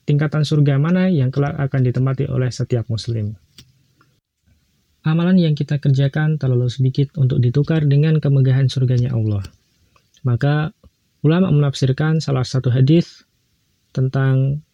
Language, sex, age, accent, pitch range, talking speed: Indonesian, male, 20-39, native, 125-150 Hz, 120 wpm